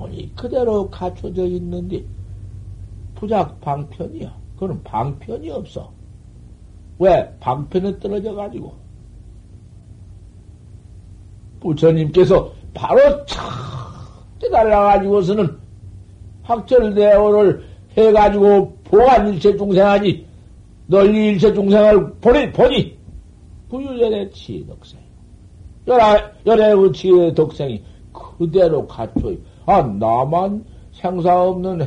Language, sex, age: Korean, male, 60-79